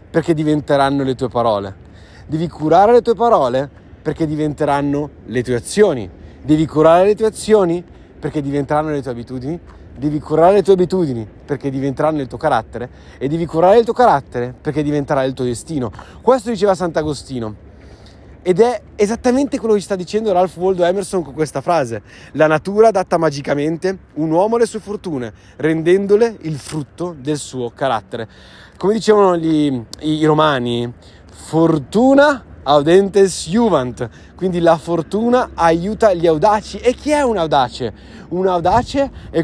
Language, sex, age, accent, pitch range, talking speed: Italian, male, 30-49, native, 135-200 Hz, 150 wpm